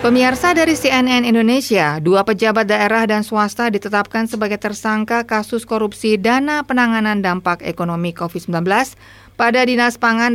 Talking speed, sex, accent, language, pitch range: 130 wpm, female, native, Indonesian, 185-235 Hz